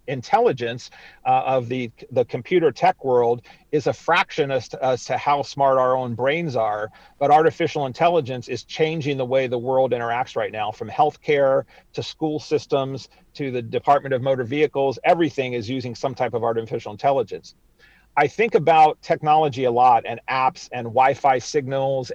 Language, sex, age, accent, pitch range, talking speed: English, male, 40-59, American, 125-160 Hz, 170 wpm